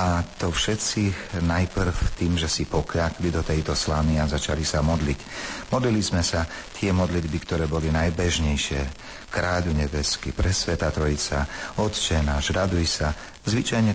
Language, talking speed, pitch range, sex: Slovak, 135 wpm, 75-90 Hz, male